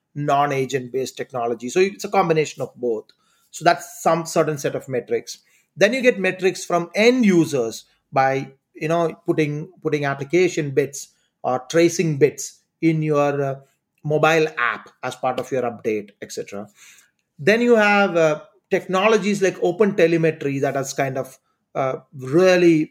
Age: 30-49